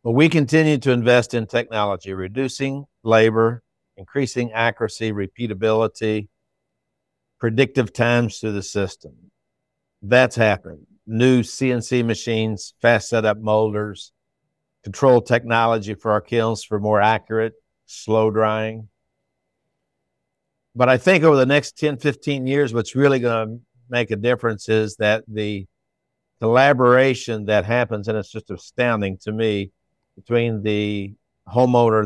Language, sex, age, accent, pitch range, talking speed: English, male, 60-79, American, 105-120 Hz, 120 wpm